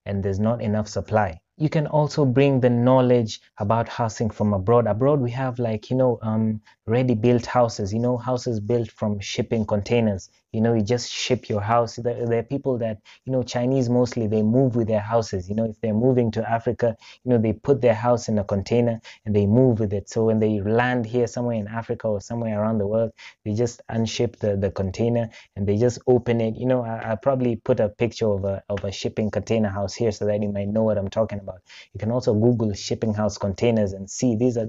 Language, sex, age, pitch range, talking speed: English, male, 20-39, 105-120 Hz, 230 wpm